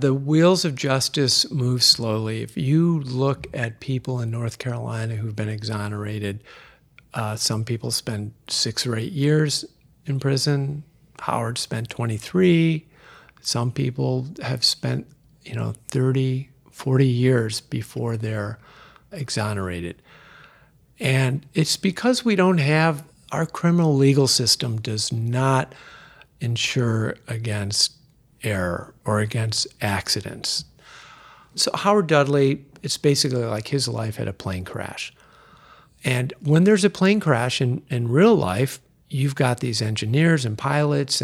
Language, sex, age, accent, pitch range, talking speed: English, male, 50-69, American, 115-145 Hz, 130 wpm